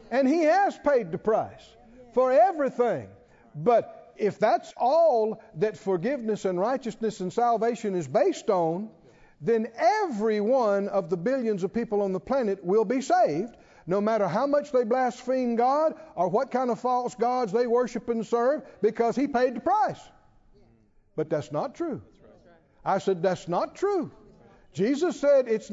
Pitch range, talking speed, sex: 200-290 Hz, 160 wpm, male